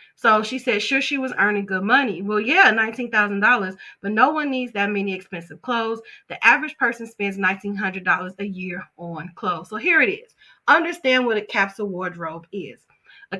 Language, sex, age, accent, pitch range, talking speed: English, female, 30-49, American, 195-250 Hz, 180 wpm